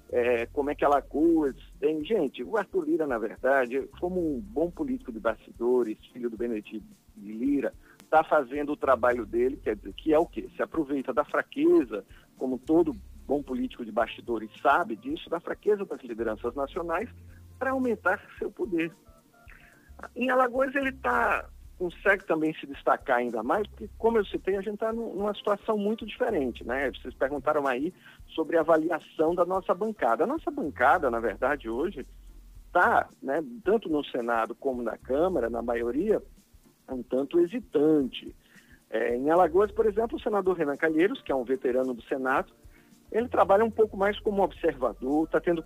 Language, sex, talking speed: Portuguese, male, 165 wpm